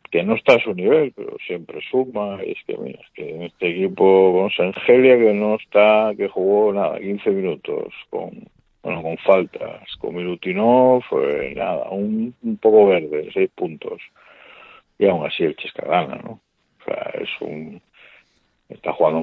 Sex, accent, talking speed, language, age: male, Spanish, 175 wpm, Spanish, 60-79